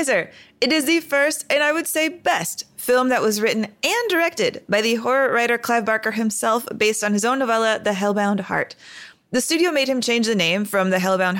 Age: 20-39